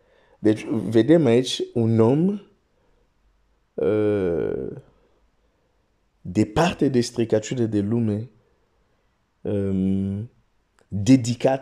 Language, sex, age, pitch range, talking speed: Romanian, male, 50-69, 110-135 Hz, 65 wpm